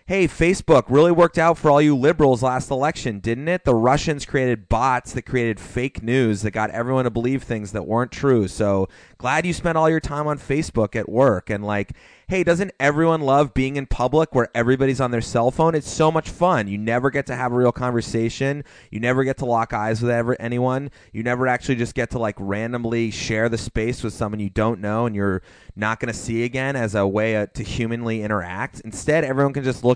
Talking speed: 220 wpm